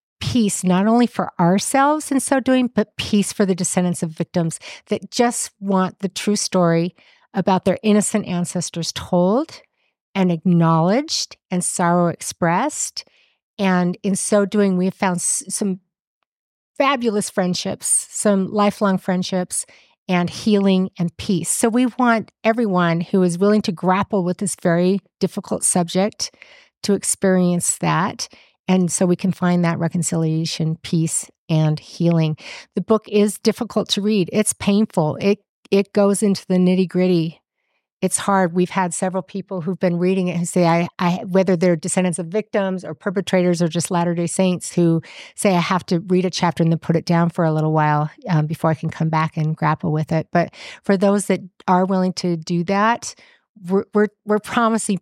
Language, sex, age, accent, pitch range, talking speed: English, female, 50-69, American, 175-205 Hz, 170 wpm